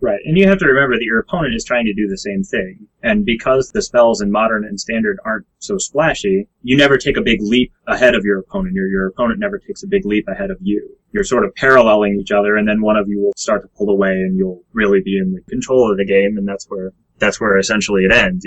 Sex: male